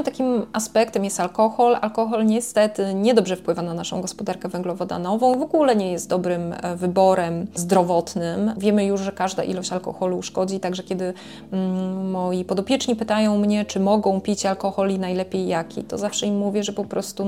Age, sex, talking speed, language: 20-39, female, 160 wpm, Polish